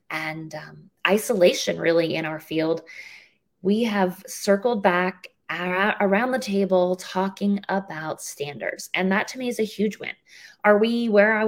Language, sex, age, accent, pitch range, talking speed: English, female, 20-39, American, 170-215 Hz, 150 wpm